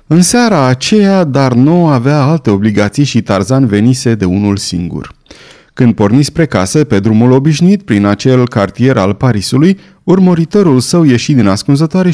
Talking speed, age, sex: 155 wpm, 30-49, male